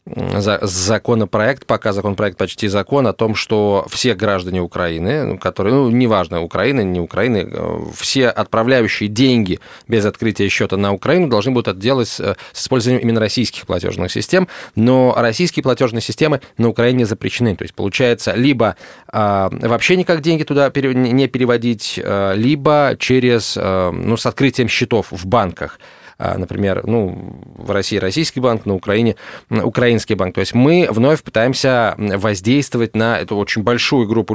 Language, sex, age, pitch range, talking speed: Russian, male, 20-39, 105-130 Hz, 140 wpm